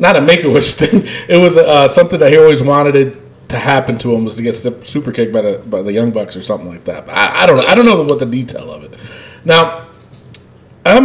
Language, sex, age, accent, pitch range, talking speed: English, male, 40-59, American, 120-165 Hz, 230 wpm